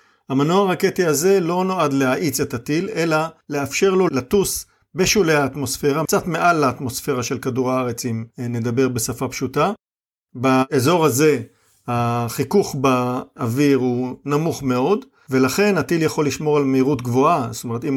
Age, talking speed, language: 50-69, 135 wpm, Hebrew